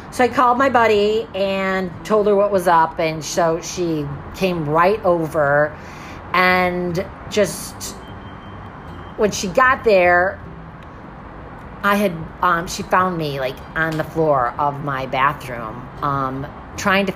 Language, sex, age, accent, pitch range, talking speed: English, female, 30-49, American, 150-180 Hz, 135 wpm